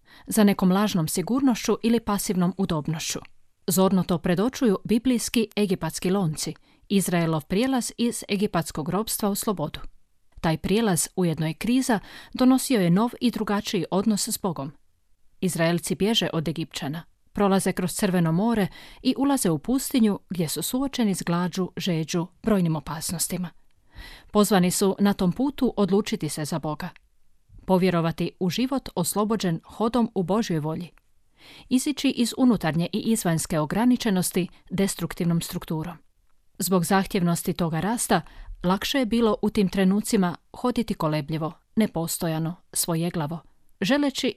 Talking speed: 125 wpm